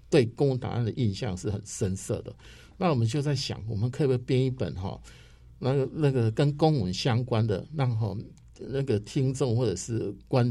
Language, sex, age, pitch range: Chinese, male, 50-69, 100-130 Hz